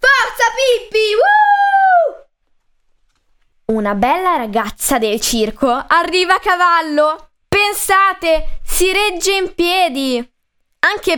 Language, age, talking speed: Italian, 10-29, 85 wpm